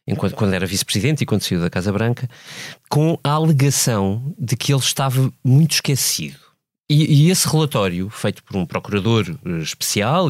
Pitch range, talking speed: 110-145 Hz, 155 wpm